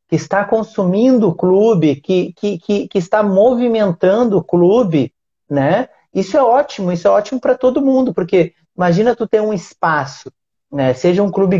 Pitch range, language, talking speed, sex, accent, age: 165-215 Hz, Portuguese, 165 wpm, male, Brazilian, 30-49